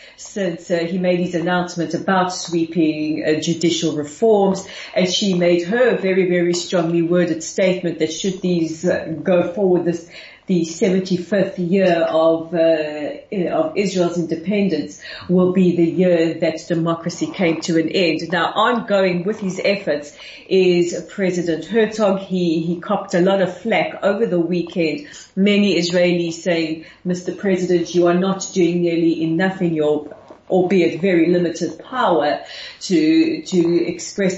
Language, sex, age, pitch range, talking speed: English, female, 40-59, 165-195 Hz, 150 wpm